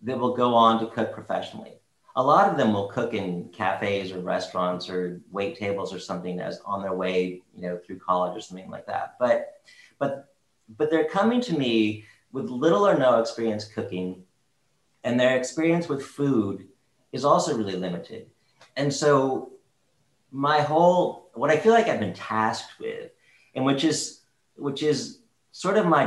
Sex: male